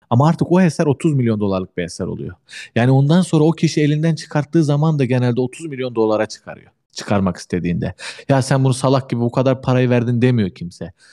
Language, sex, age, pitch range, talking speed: Turkish, male, 40-59, 115-155 Hz, 200 wpm